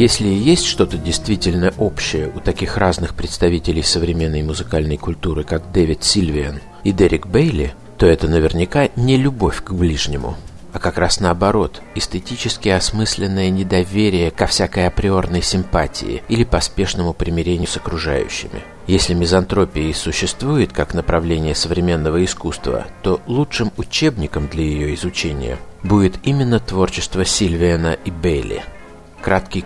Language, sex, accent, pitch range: Russian, male, native, 80-100 Hz